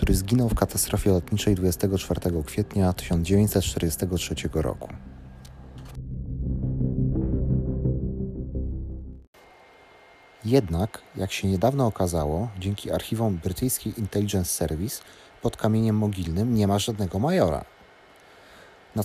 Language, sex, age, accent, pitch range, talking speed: Polish, male, 30-49, native, 85-115 Hz, 85 wpm